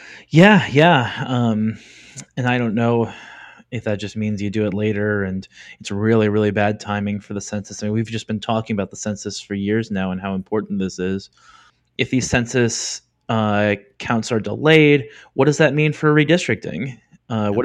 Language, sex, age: English, male, 20-39